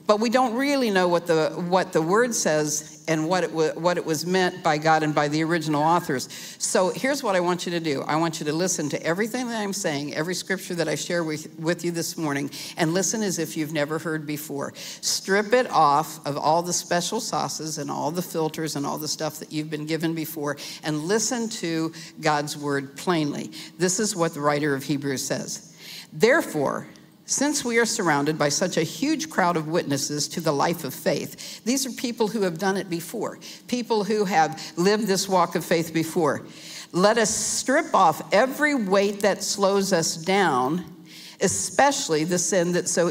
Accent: American